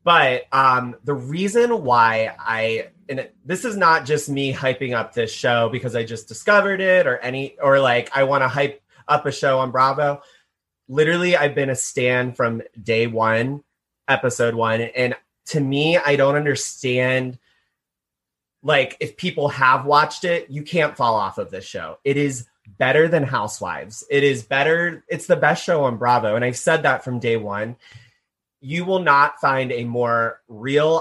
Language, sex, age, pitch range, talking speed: English, male, 30-49, 120-150 Hz, 175 wpm